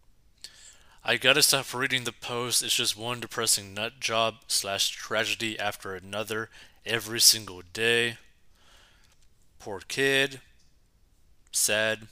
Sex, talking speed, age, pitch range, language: male, 110 wpm, 30-49, 100-130 Hz, English